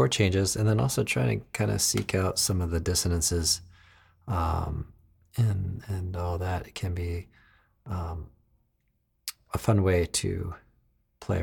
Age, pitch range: 40-59, 85-100 Hz